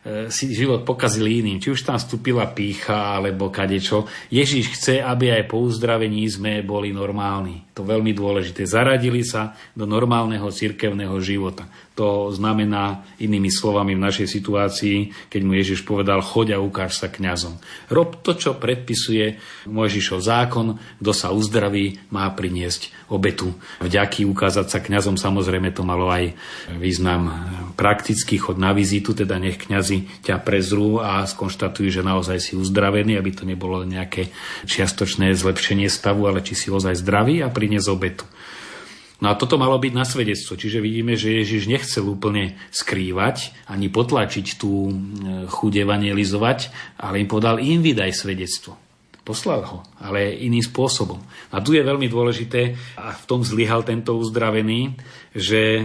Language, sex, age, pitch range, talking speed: Slovak, male, 40-59, 95-115 Hz, 145 wpm